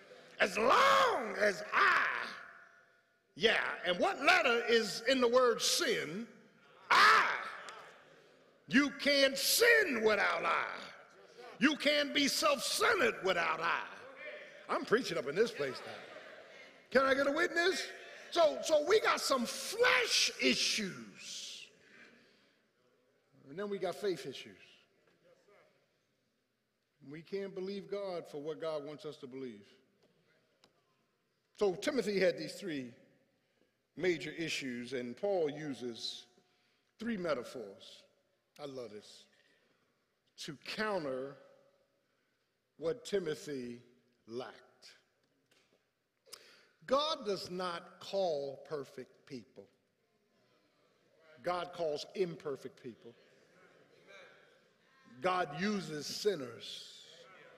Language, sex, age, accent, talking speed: English, male, 50-69, American, 100 wpm